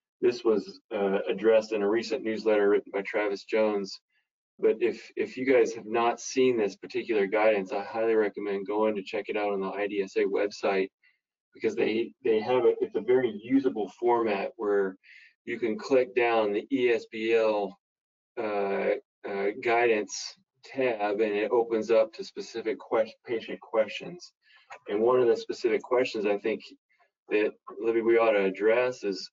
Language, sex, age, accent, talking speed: English, male, 20-39, American, 165 wpm